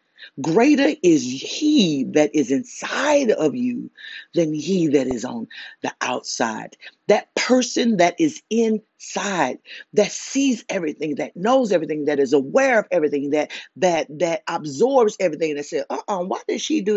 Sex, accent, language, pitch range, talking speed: female, American, English, 160-250 Hz, 150 wpm